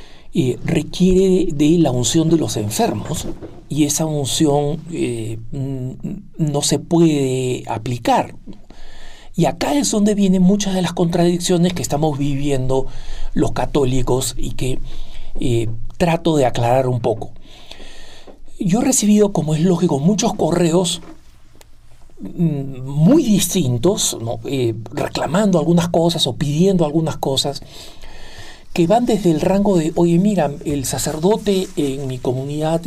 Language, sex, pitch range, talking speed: Spanish, male, 130-175 Hz, 130 wpm